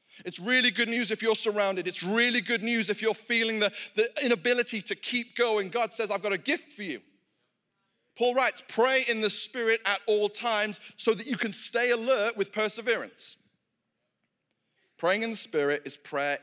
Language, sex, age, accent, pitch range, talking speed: English, male, 30-49, British, 155-225 Hz, 185 wpm